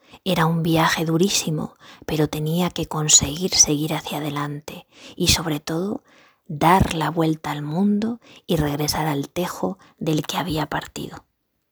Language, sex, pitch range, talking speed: Spanish, female, 160-195 Hz, 140 wpm